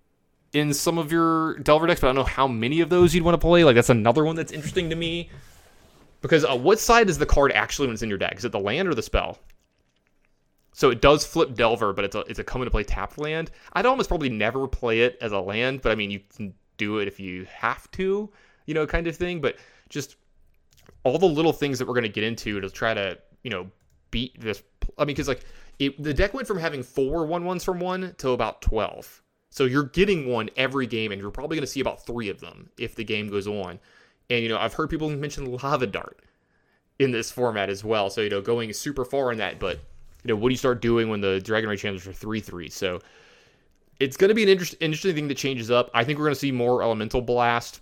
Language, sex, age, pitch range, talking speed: English, male, 30-49, 110-155 Hz, 250 wpm